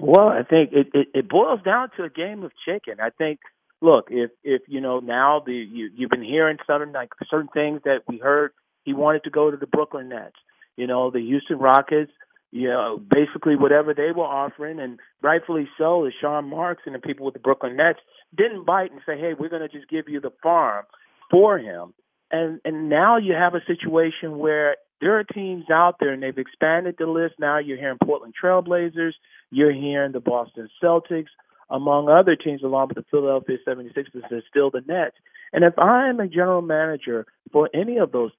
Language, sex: English, male